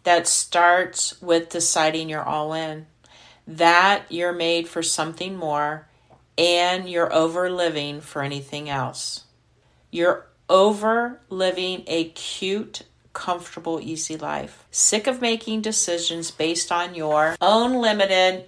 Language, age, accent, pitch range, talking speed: English, 50-69, American, 150-185 Hz, 120 wpm